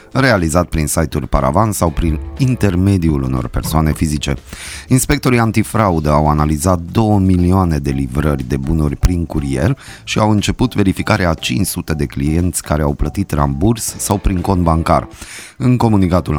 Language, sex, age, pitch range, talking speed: Romanian, male, 30-49, 75-95 Hz, 145 wpm